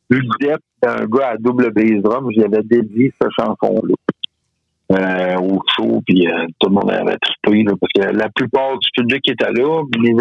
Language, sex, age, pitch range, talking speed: English, male, 60-79, 110-145 Hz, 180 wpm